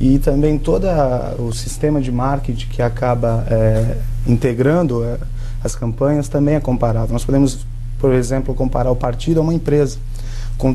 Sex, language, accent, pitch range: male, Portuguese, Brazilian, 120-145 Hz